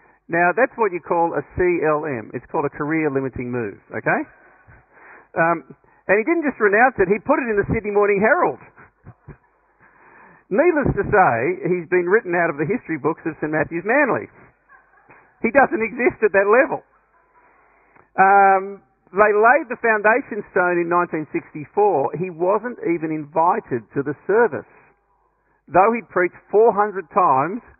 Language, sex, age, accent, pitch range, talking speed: English, male, 50-69, Australian, 135-195 Hz, 150 wpm